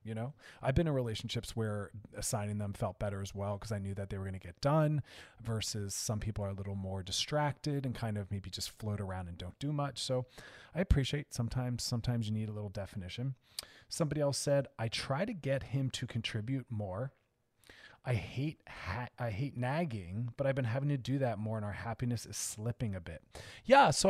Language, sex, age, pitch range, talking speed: English, male, 30-49, 105-140 Hz, 215 wpm